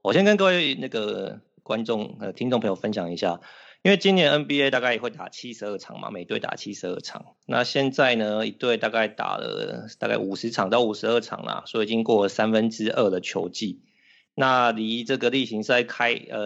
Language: Chinese